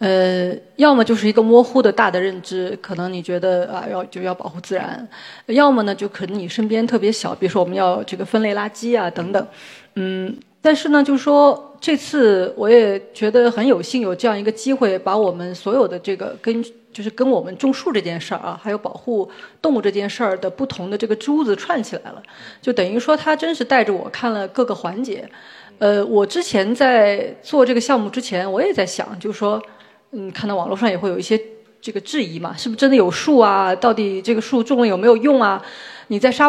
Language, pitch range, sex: Chinese, 195-255 Hz, female